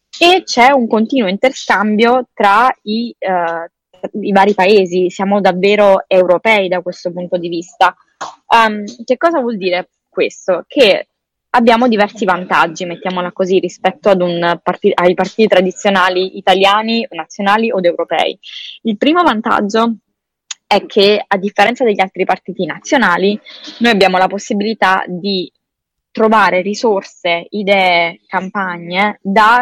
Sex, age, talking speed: female, 20-39, 130 wpm